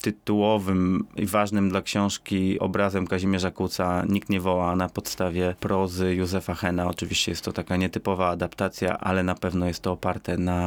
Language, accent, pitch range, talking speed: Polish, native, 95-105 Hz, 165 wpm